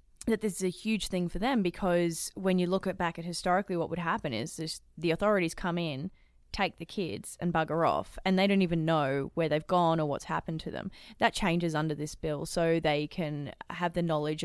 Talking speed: 225 wpm